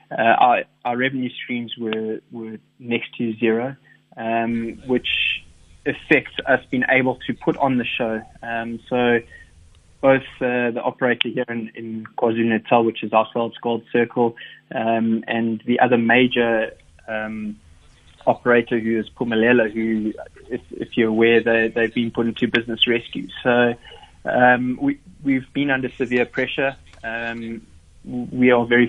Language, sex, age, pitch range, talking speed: English, male, 20-39, 115-125 Hz, 145 wpm